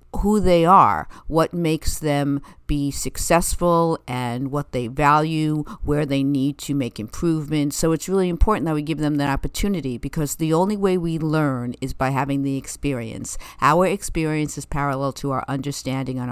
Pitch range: 140-165 Hz